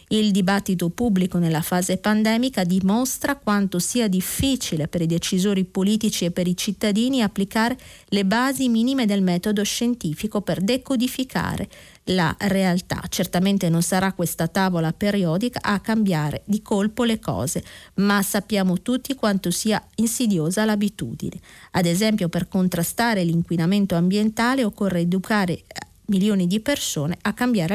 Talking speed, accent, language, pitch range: 130 wpm, native, Italian, 175-220 Hz